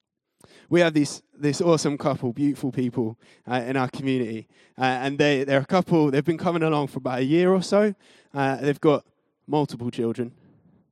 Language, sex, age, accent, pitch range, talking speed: English, male, 20-39, British, 135-190 Hz, 180 wpm